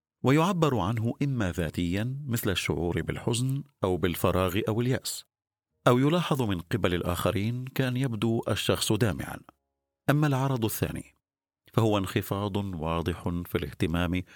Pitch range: 90-130 Hz